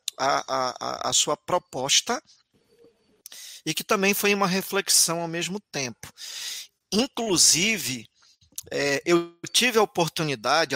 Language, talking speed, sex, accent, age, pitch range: Portuguese, 110 wpm, male, Brazilian, 40-59, 145-200 Hz